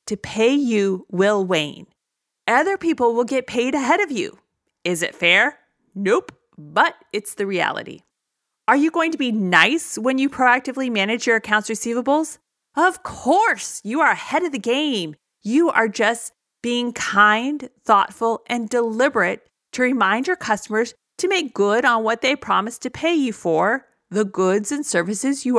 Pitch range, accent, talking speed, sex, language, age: 200-270 Hz, American, 165 wpm, female, English, 30-49